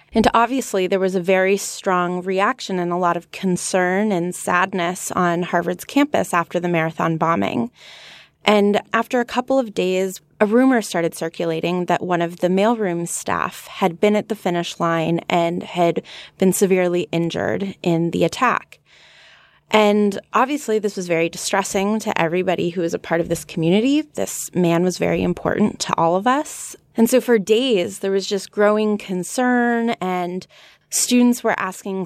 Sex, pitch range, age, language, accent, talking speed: female, 180-230 Hz, 20-39, English, American, 165 wpm